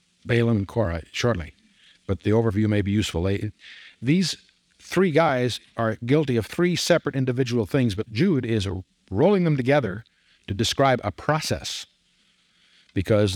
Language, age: English, 60-79